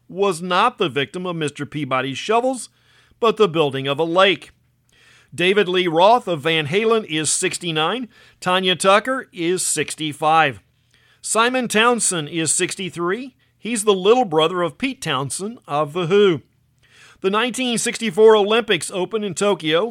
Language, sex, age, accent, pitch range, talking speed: English, male, 50-69, American, 155-210 Hz, 140 wpm